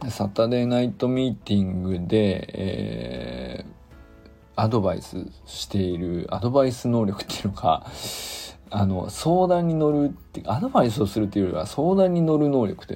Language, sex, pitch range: Japanese, male, 95-145 Hz